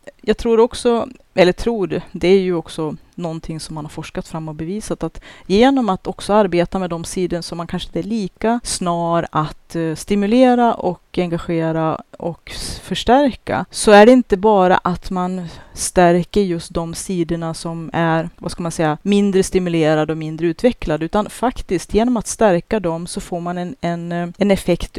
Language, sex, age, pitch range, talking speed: Swedish, female, 30-49, 165-200 Hz, 180 wpm